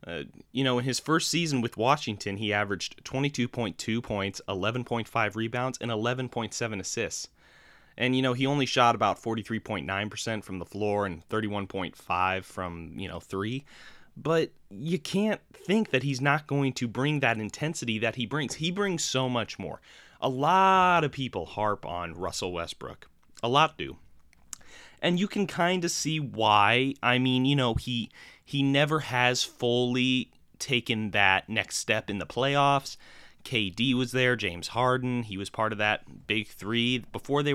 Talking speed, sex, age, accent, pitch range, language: 165 wpm, male, 30-49, American, 105-135 Hz, English